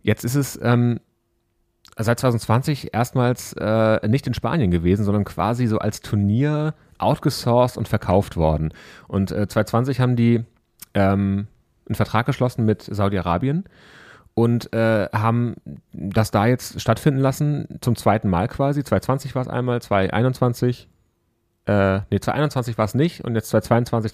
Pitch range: 100-125 Hz